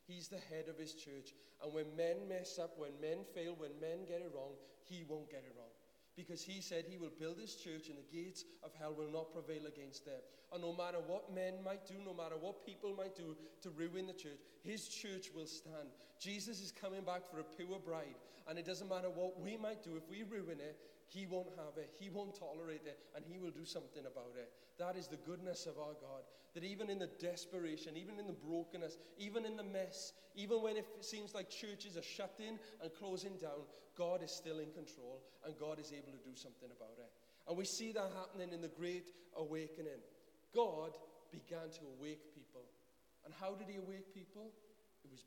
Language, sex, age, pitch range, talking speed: English, male, 40-59, 155-190 Hz, 220 wpm